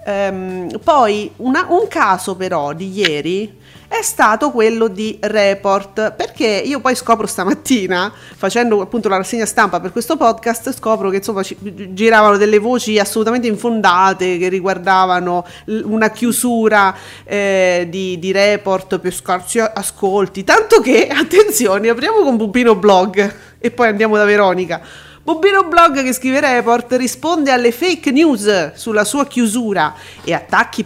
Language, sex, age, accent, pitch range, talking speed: Italian, female, 40-59, native, 195-255 Hz, 140 wpm